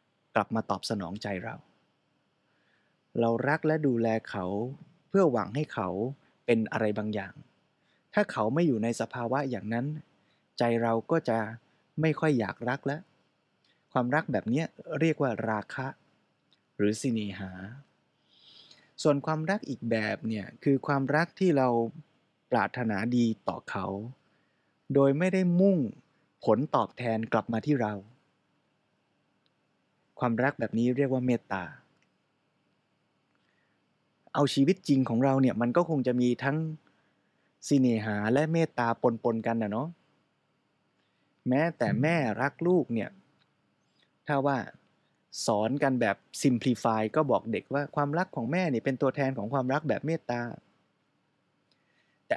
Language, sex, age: Thai, male, 20-39